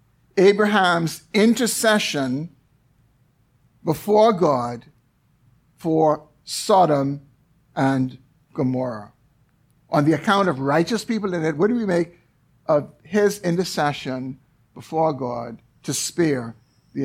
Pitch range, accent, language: 135-190 Hz, American, English